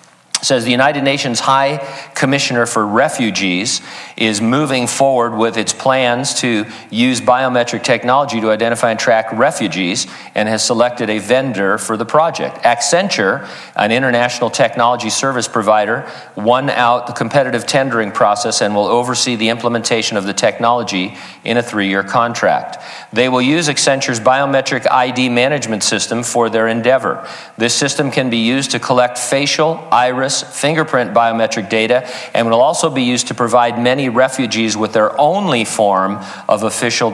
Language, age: English, 50-69